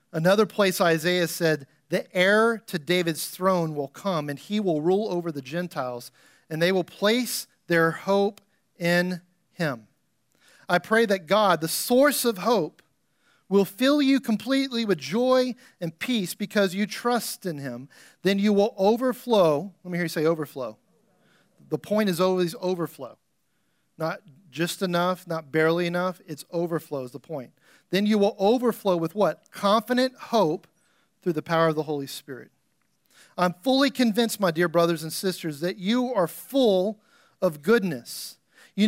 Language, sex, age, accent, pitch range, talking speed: English, male, 40-59, American, 165-220 Hz, 160 wpm